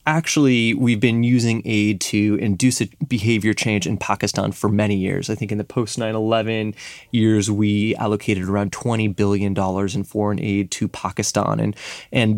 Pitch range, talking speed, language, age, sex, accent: 105-130 Hz, 160 wpm, English, 20-39, male, American